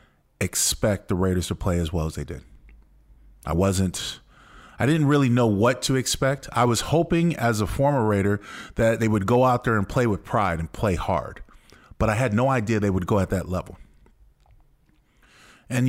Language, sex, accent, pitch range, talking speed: English, male, American, 100-135 Hz, 195 wpm